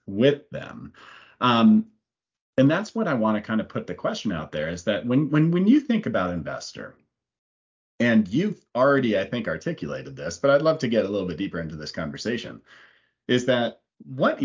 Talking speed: 195 wpm